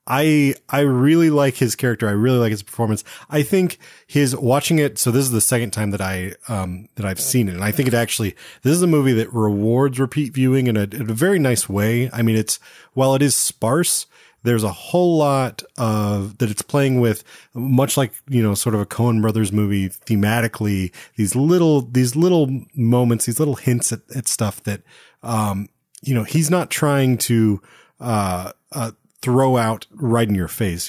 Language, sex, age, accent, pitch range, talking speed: English, male, 30-49, American, 110-140 Hz, 200 wpm